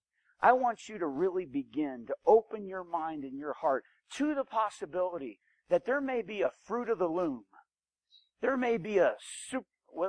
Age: 50-69